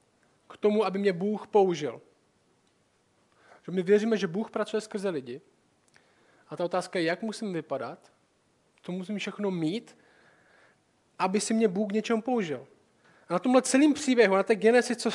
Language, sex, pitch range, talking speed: Czech, male, 185-220 Hz, 160 wpm